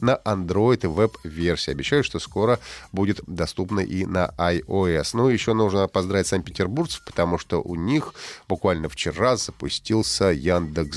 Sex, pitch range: male, 95-125 Hz